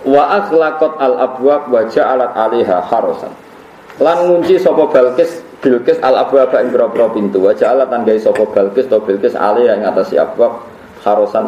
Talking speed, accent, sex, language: 145 wpm, native, male, Indonesian